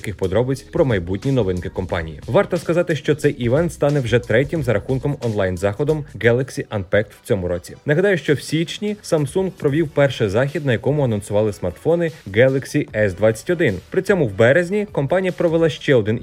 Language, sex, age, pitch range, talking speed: Ukrainian, male, 30-49, 115-170 Hz, 165 wpm